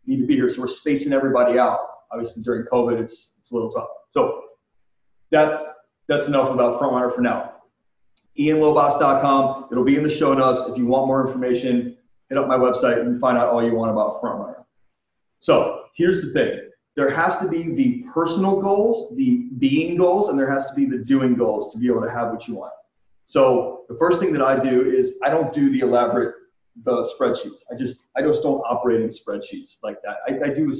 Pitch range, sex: 125-160 Hz, male